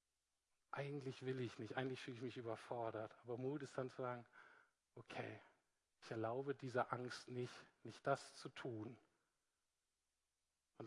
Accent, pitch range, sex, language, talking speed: German, 120-160 Hz, male, German, 145 wpm